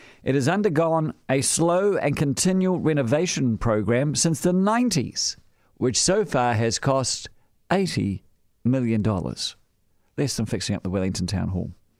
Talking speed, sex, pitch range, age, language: 135 wpm, male, 105-155 Hz, 50-69, English